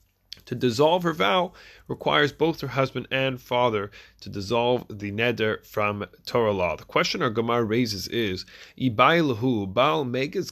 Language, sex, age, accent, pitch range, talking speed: English, male, 30-49, American, 105-140 Hz, 150 wpm